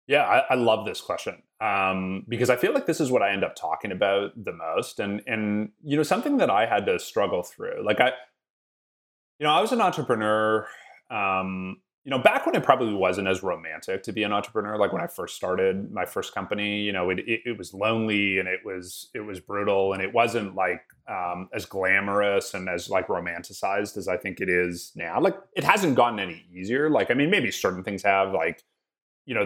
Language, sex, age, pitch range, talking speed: English, male, 30-49, 95-125 Hz, 220 wpm